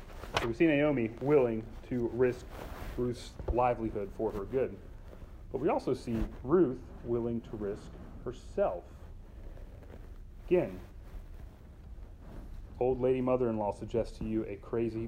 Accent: American